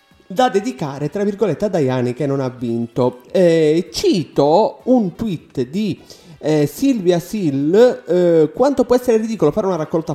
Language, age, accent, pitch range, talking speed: Italian, 30-49, native, 145-195 Hz, 155 wpm